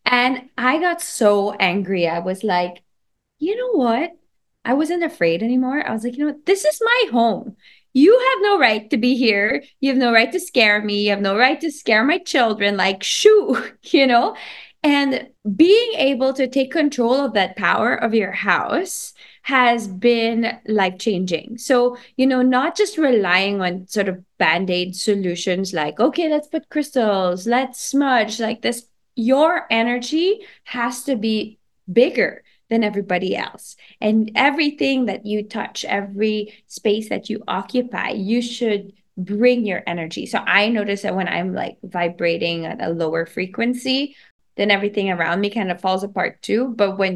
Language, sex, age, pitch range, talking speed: English, female, 20-39, 200-265 Hz, 170 wpm